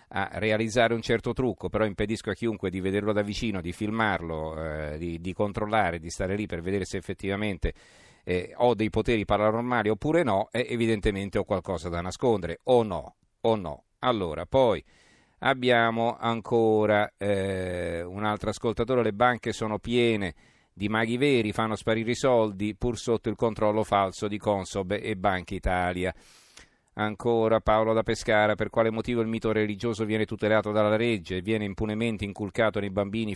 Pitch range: 95-110 Hz